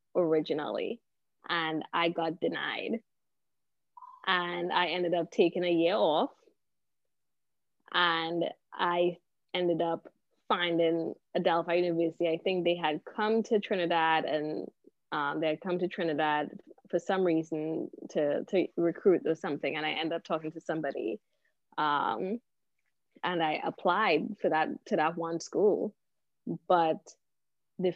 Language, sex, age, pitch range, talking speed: English, female, 20-39, 165-195 Hz, 130 wpm